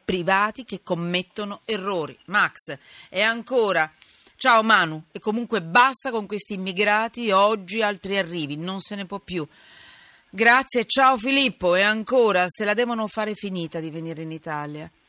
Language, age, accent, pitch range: Italian, 40-59, native, 165-220 Hz